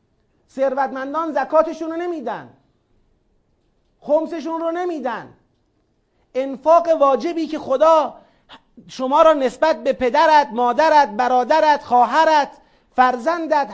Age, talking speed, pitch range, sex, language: 40-59, 85 wpm, 245-315 Hz, male, Persian